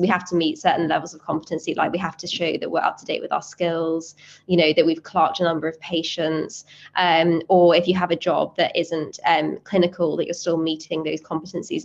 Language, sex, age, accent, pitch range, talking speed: English, female, 20-39, British, 170-205 Hz, 240 wpm